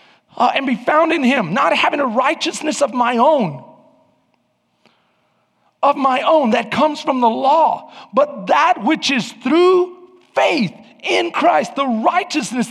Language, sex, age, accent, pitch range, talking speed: English, male, 40-59, American, 185-255 Hz, 145 wpm